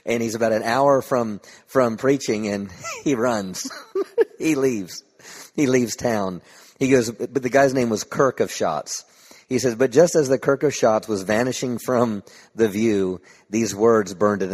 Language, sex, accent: English, male, American